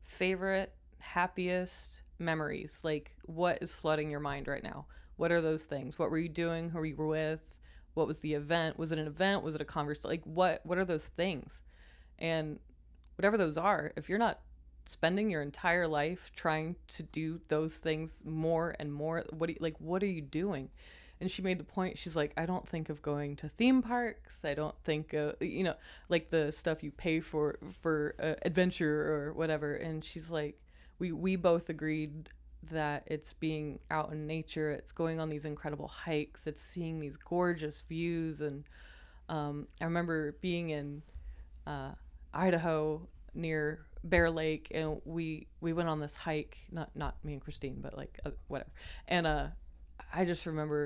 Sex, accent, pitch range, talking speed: female, American, 150-170 Hz, 185 wpm